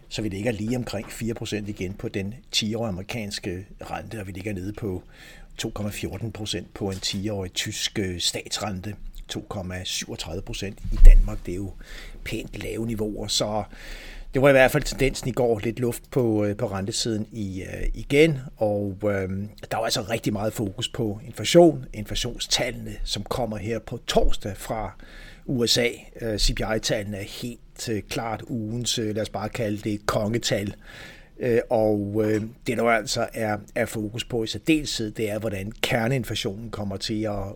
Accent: native